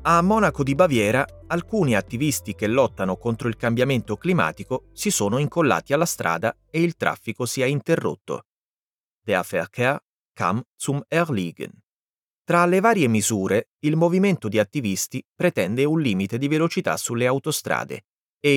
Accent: native